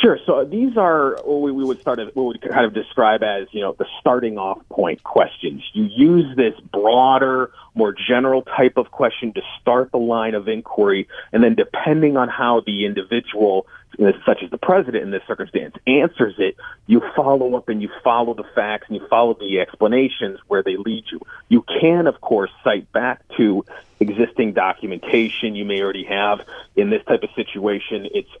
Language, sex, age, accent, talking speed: English, male, 40-59, American, 180 wpm